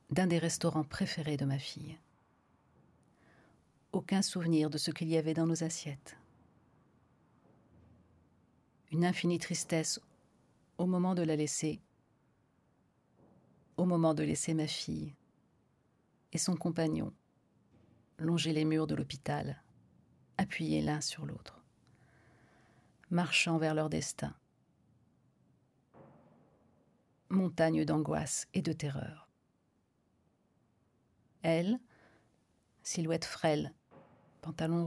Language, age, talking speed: French, 40-59, 95 wpm